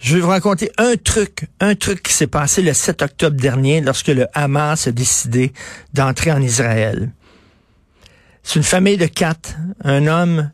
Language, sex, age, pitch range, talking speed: French, male, 50-69, 125-160 Hz, 170 wpm